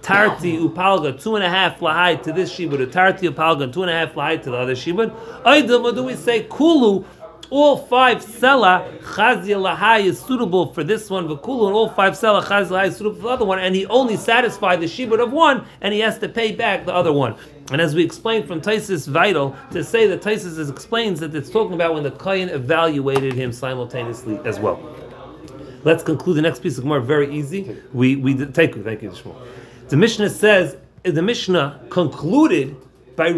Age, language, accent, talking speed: 30-49, English, American, 205 wpm